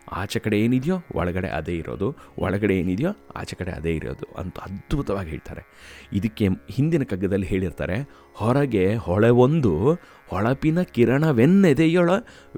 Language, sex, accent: Kannada, male, native